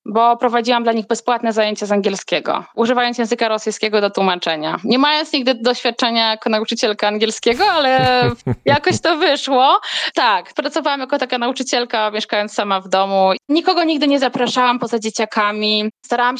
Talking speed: 145 wpm